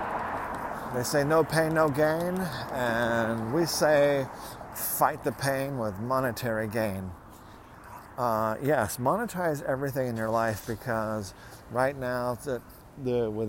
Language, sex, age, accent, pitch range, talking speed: English, male, 50-69, American, 110-125 Hz, 115 wpm